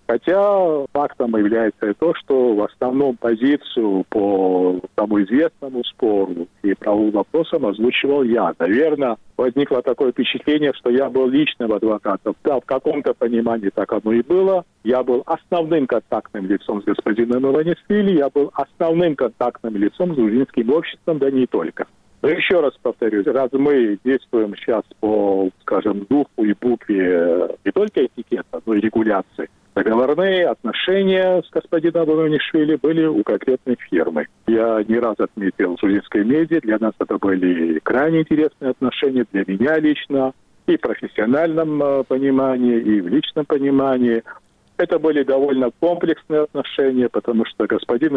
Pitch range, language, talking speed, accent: 110-155 Hz, Russian, 140 wpm, native